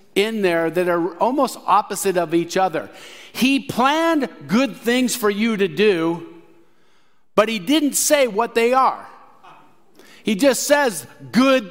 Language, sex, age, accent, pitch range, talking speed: English, male, 50-69, American, 165-225 Hz, 145 wpm